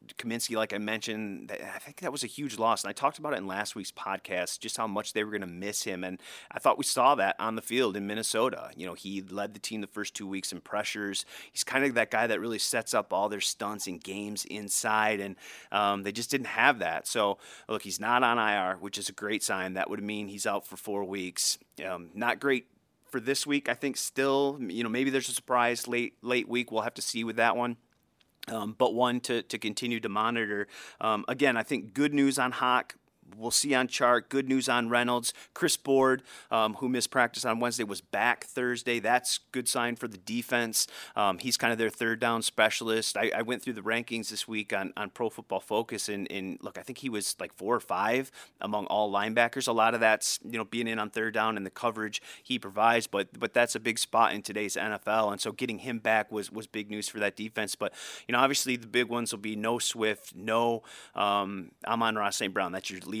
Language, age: English, 30-49